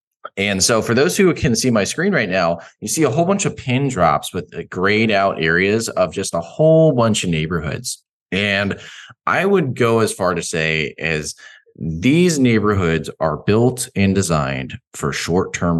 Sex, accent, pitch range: male, American, 85-115 Hz